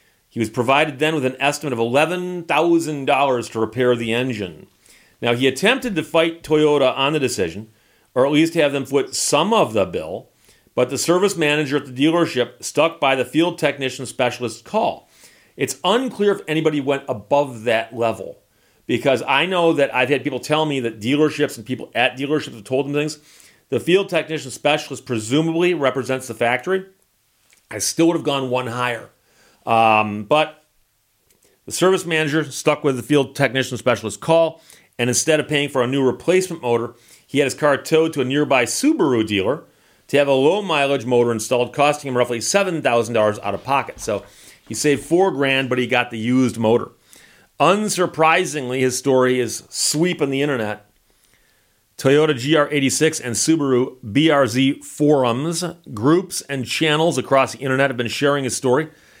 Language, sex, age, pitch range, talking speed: English, male, 40-59, 125-155 Hz, 170 wpm